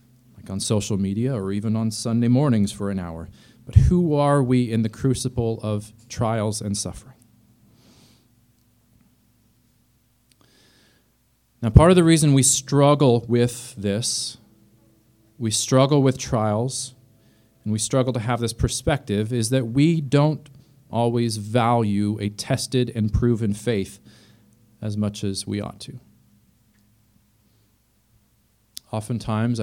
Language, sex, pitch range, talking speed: English, male, 110-135 Hz, 120 wpm